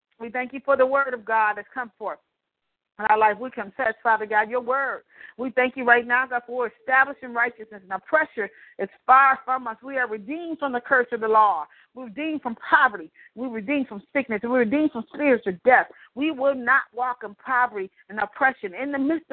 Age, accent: 40-59, American